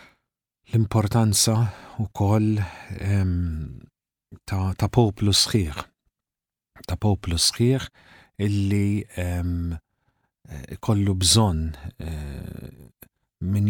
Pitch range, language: 85-110 Hz, English